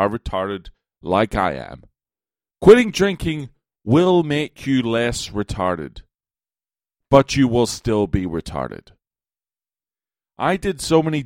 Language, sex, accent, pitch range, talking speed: English, male, American, 90-120 Hz, 115 wpm